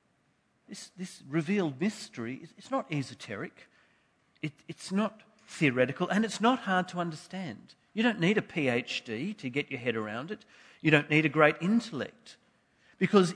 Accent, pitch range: Australian, 150-205 Hz